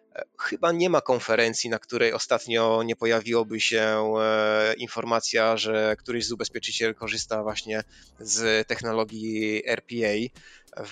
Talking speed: 115 wpm